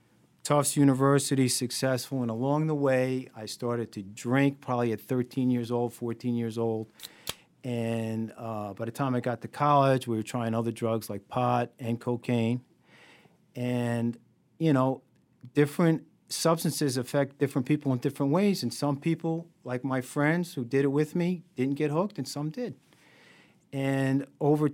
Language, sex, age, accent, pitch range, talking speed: English, male, 50-69, American, 120-145 Hz, 165 wpm